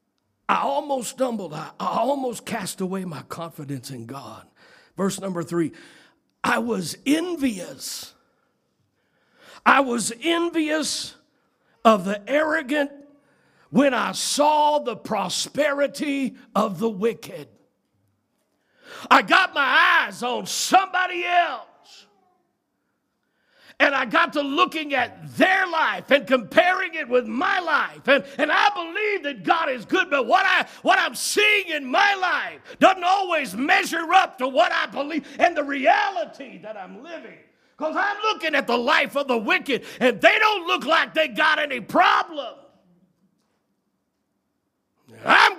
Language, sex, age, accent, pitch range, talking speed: English, male, 60-79, American, 235-340 Hz, 135 wpm